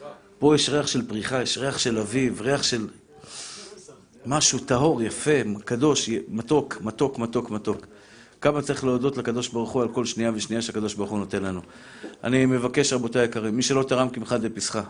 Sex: male